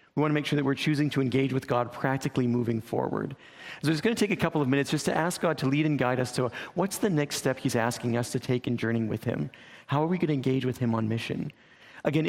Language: English